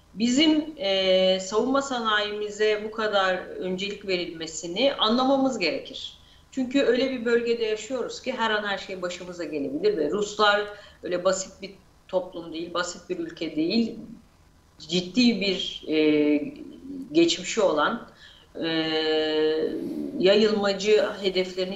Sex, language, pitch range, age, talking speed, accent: female, Turkish, 175-255 Hz, 40-59, 115 wpm, native